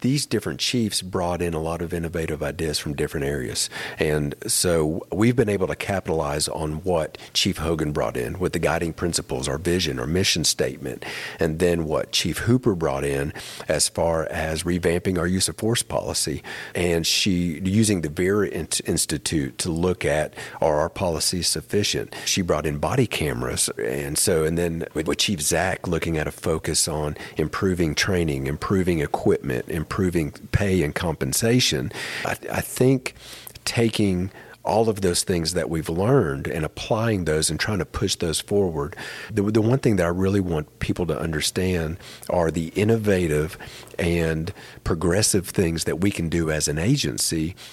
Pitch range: 80-100 Hz